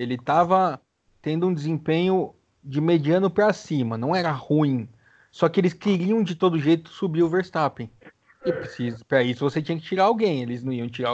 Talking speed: 180 wpm